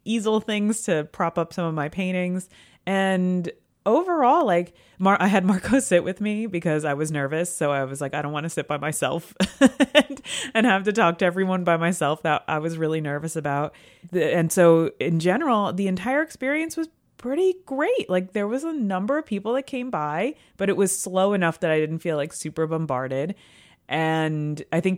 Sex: female